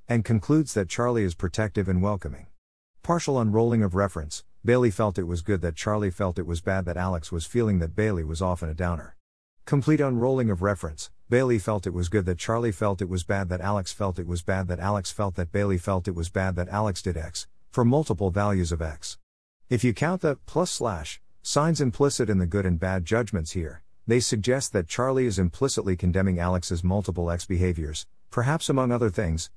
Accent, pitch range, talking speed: American, 90-120 Hz, 205 wpm